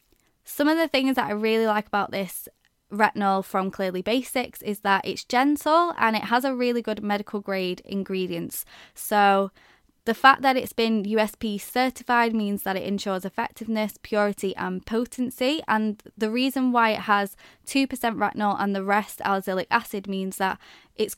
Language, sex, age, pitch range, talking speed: French, female, 20-39, 200-240 Hz, 165 wpm